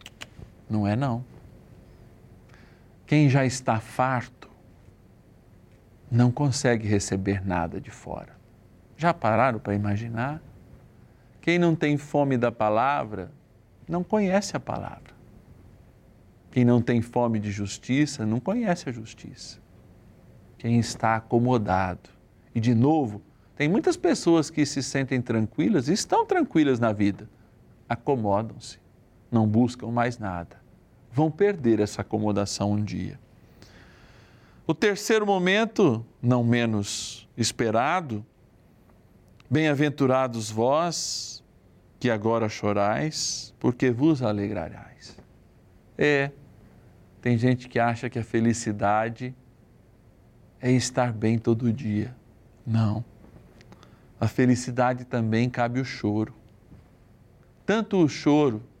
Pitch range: 105-130 Hz